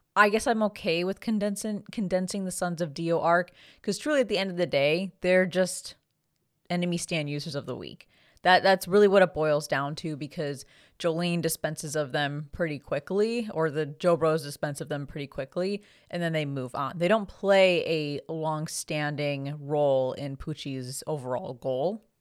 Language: English